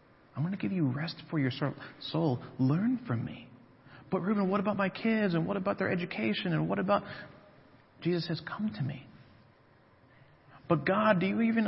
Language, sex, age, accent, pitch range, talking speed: English, male, 40-59, American, 125-180 Hz, 185 wpm